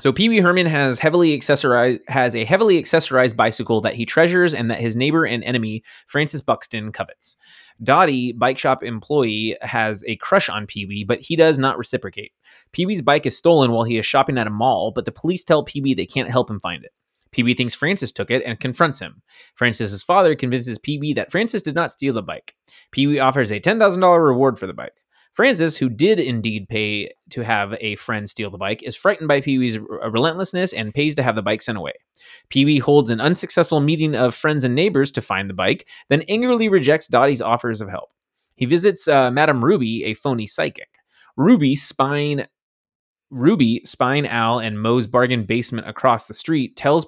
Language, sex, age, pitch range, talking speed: English, male, 20-39, 115-150 Hz, 195 wpm